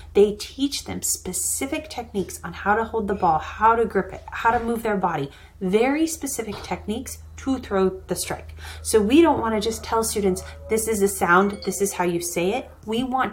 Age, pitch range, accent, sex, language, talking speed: 30-49, 185-230 Hz, American, female, English, 210 wpm